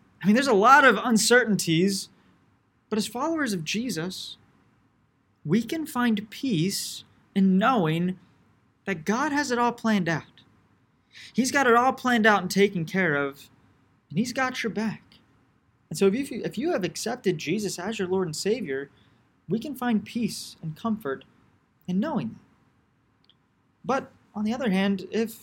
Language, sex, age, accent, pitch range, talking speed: English, male, 20-39, American, 165-220 Hz, 160 wpm